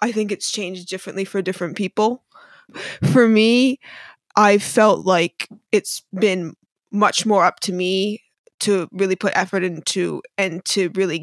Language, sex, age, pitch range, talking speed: English, female, 20-39, 185-210 Hz, 150 wpm